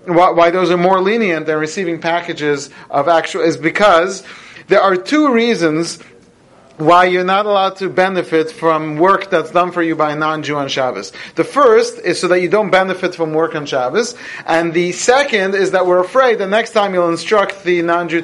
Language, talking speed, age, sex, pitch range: English, 195 wpm, 40-59, male, 160-195 Hz